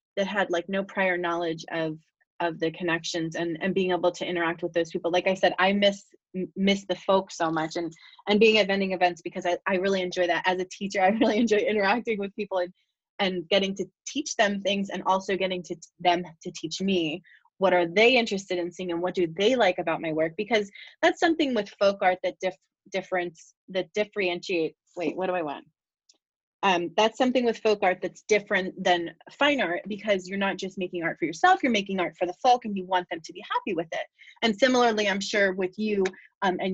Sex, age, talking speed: female, 20-39, 225 wpm